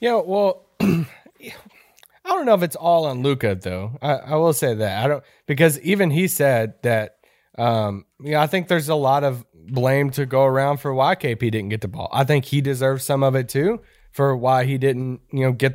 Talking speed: 230 wpm